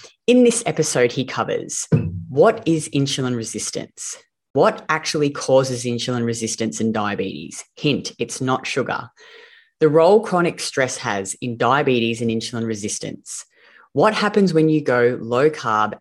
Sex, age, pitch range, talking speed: female, 30-49, 115-160 Hz, 140 wpm